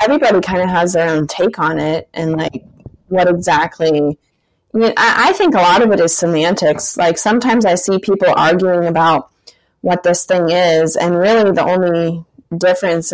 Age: 20-39